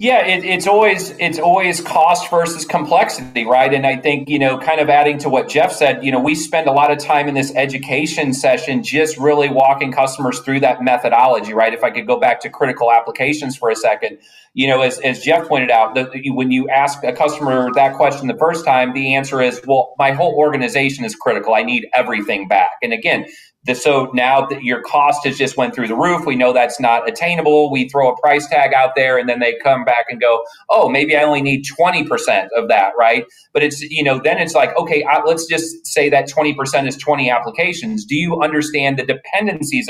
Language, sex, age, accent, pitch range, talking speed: English, male, 40-59, American, 130-155 Hz, 225 wpm